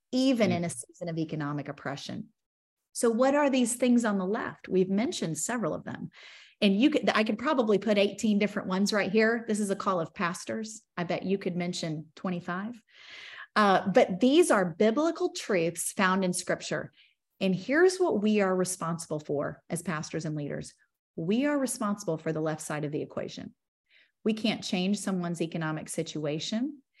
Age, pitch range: 30-49, 170-220 Hz